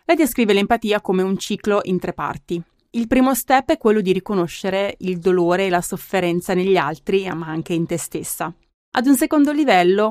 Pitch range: 175-215 Hz